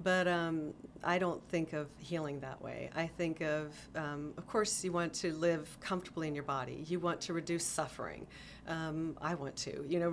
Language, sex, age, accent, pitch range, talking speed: English, female, 40-59, American, 145-175 Hz, 200 wpm